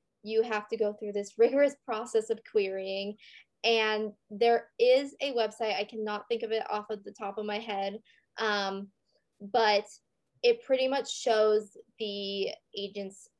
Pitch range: 205-245 Hz